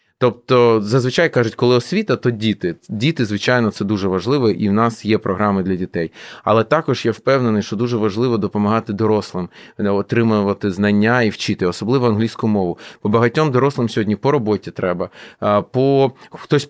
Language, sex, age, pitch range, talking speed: Ukrainian, male, 30-49, 105-125 Hz, 160 wpm